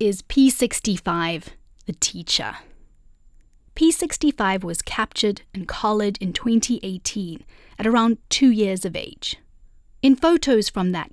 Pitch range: 180-235 Hz